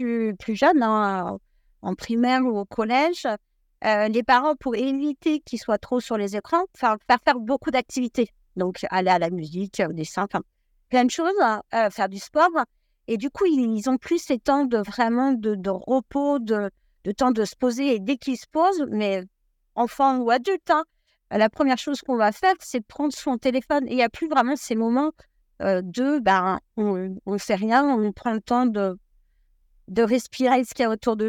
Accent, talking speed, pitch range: French, 210 wpm, 210-270 Hz